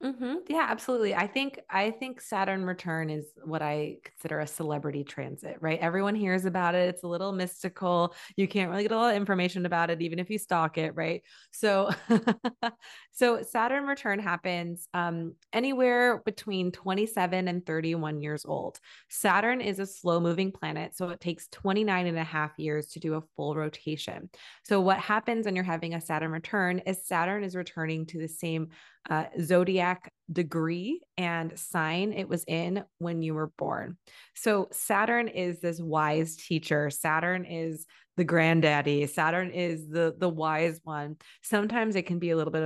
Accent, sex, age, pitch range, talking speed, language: American, female, 20-39, 160-200 Hz, 175 wpm, English